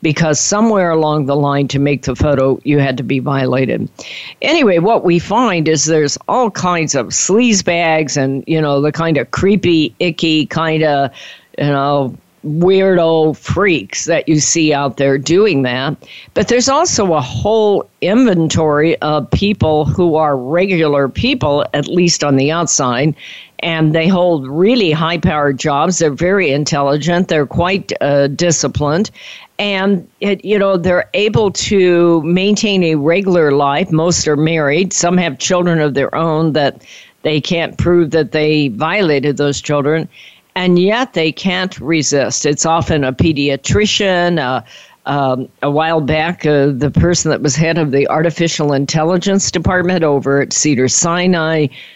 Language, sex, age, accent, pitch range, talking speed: English, female, 50-69, American, 145-175 Hz, 155 wpm